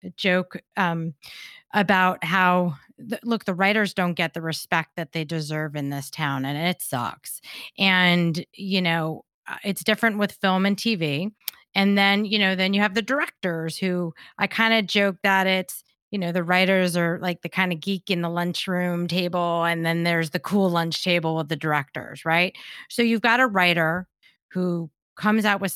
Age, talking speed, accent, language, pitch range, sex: 30-49, 185 wpm, American, English, 165-200 Hz, female